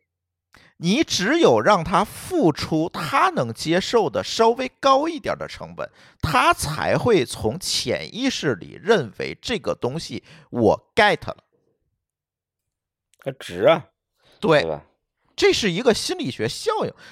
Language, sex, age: Chinese, male, 50-69